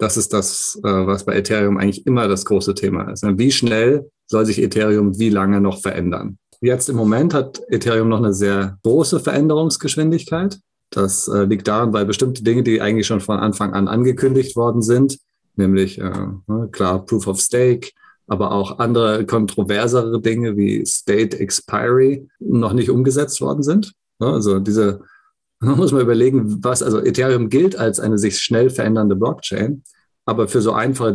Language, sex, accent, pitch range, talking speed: German, male, German, 100-125 Hz, 160 wpm